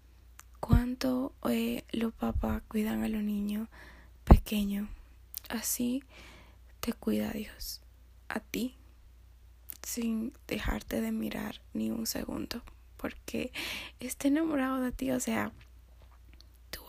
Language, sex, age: Spanish, female, 10-29